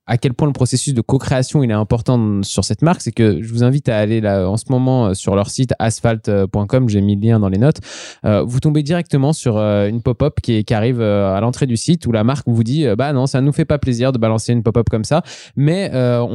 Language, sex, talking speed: French, male, 265 wpm